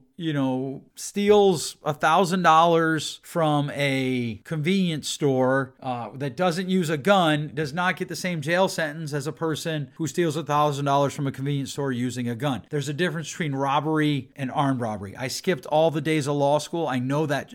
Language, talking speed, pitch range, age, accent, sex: English, 195 wpm, 145-195 Hz, 40-59, American, male